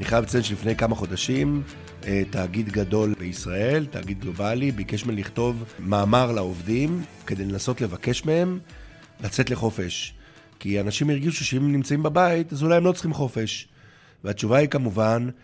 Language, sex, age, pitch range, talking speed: Hebrew, male, 50-69, 100-130 Hz, 150 wpm